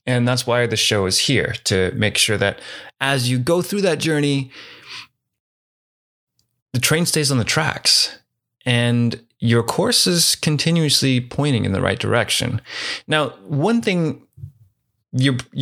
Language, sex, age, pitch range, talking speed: English, male, 30-49, 110-135 Hz, 140 wpm